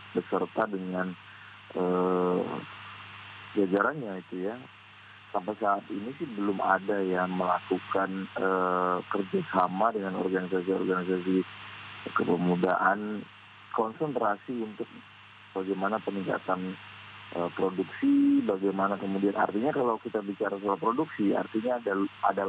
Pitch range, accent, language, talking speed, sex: 90-105 Hz, native, Indonesian, 95 wpm, male